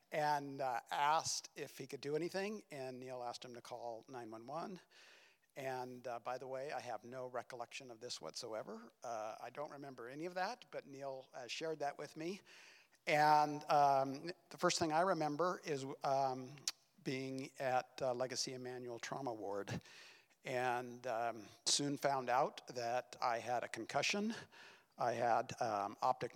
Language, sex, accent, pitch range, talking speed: English, male, American, 125-150 Hz, 160 wpm